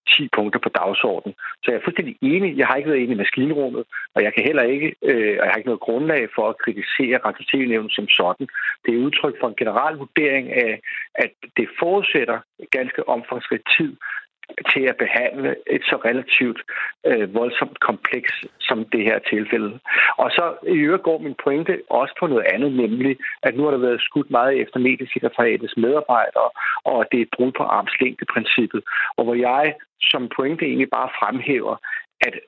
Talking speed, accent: 185 wpm, native